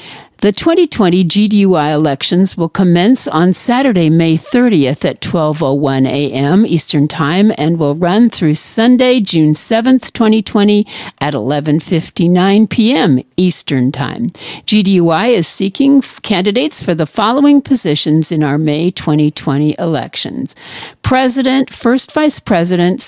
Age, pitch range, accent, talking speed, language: 60-79, 155-220 Hz, American, 115 wpm, English